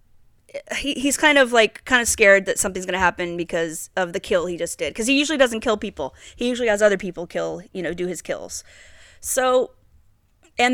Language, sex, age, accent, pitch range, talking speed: English, female, 30-49, American, 170-240 Hz, 220 wpm